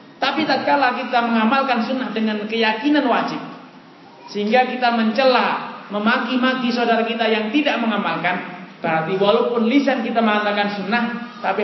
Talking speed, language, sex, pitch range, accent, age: 130 wpm, Indonesian, male, 210-250 Hz, native, 30-49